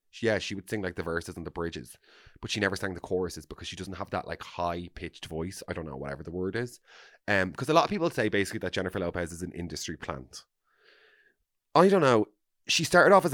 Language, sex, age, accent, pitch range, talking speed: English, male, 20-39, Irish, 85-110 Hz, 240 wpm